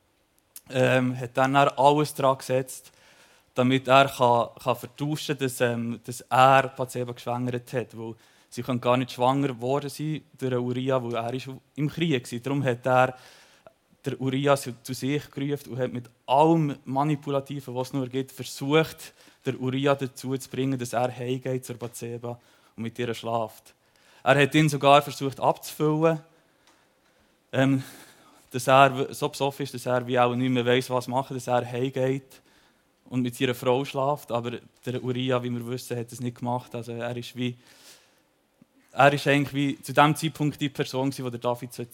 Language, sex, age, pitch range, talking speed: German, male, 20-39, 125-140 Hz, 175 wpm